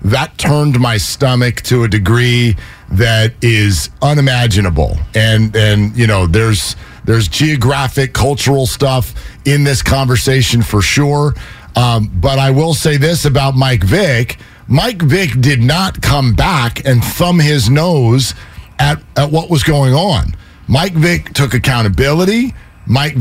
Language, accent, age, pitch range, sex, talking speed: English, American, 50-69, 120-175 Hz, male, 140 wpm